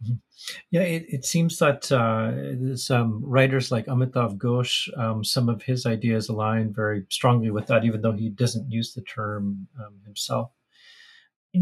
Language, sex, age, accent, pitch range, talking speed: English, male, 40-59, American, 115-135 Hz, 160 wpm